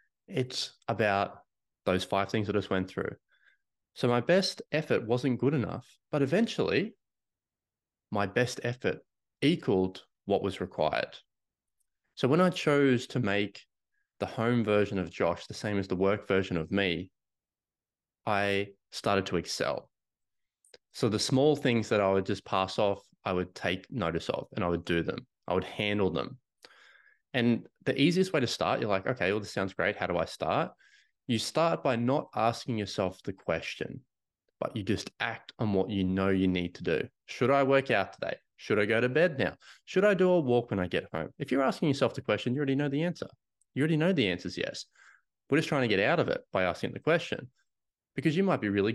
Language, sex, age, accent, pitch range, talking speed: English, male, 20-39, Australian, 100-135 Hz, 200 wpm